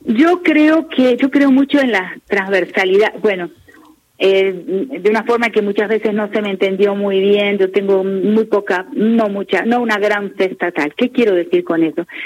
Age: 40-59